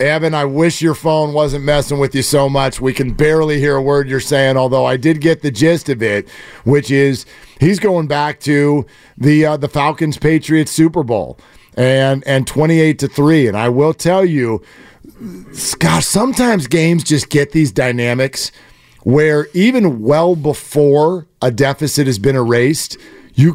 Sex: male